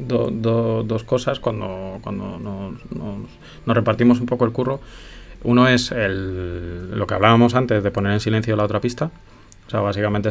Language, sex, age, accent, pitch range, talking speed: Spanish, male, 20-39, Spanish, 100-120 Hz, 180 wpm